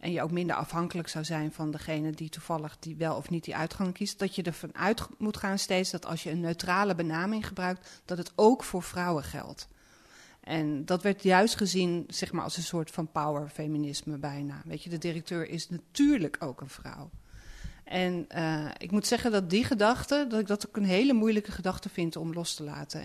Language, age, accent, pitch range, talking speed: Dutch, 40-59, Dutch, 155-190 Hz, 210 wpm